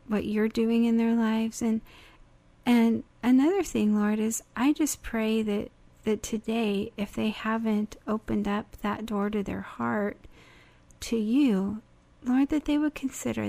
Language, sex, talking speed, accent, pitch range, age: English, female, 155 wpm, American, 205-235 Hz, 40-59